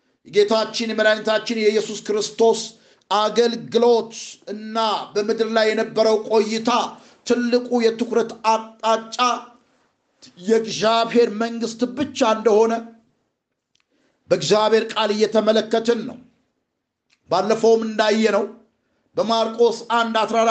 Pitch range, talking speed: 225-245 Hz, 65 wpm